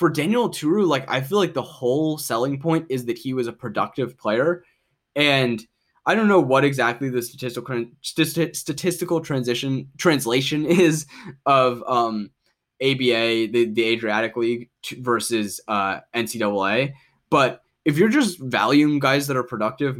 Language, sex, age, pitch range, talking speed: English, male, 10-29, 105-135 Hz, 155 wpm